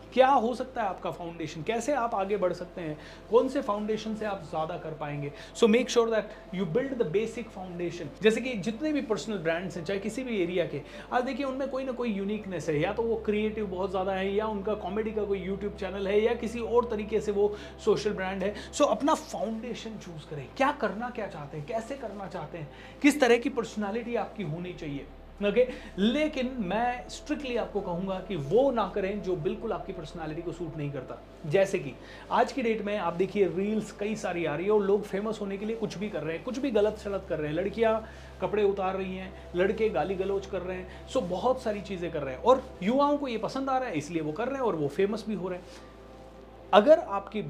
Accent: native